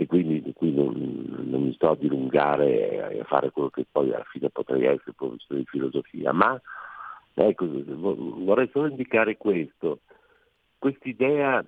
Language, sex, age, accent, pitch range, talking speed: Italian, male, 50-69, native, 90-145 Hz, 155 wpm